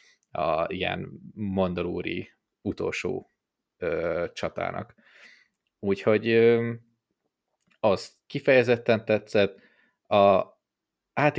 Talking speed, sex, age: 70 wpm, male, 20-39